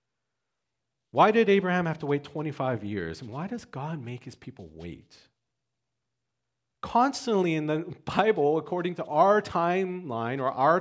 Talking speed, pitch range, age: 145 wpm, 130-190 Hz, 40-59